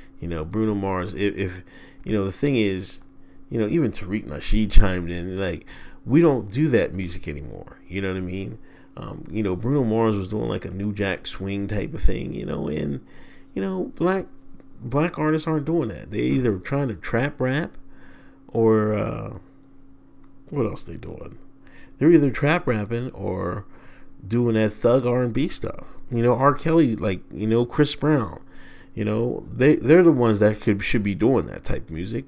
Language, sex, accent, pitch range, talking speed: English, male, American, 95-135 Hz, 190 wpm